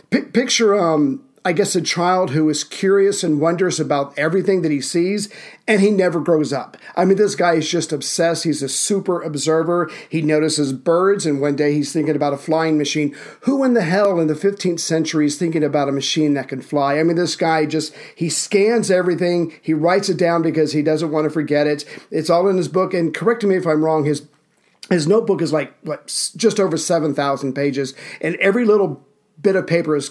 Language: English